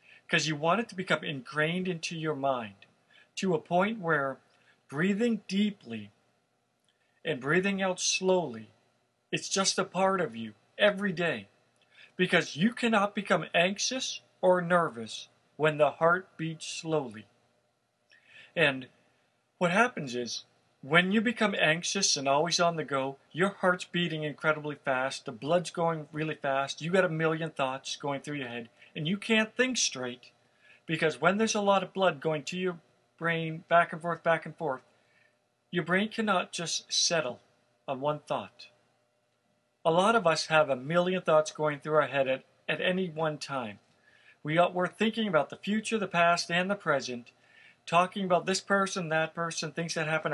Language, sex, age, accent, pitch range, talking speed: English, male, 50-69, American, 145-185 Hz, 165 wpm